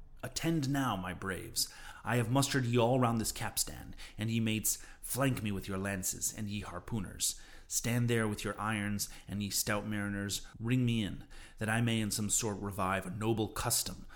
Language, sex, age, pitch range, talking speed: English, male, 30-49, 100-125 Hz, 190 wpm